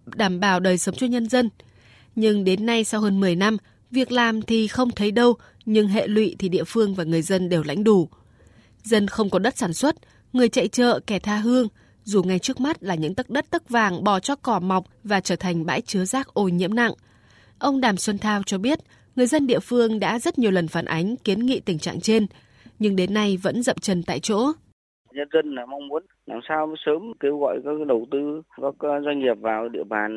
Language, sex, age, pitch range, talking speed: Vietnamese, female, 20-39, 140-220 Hz, 230 wpm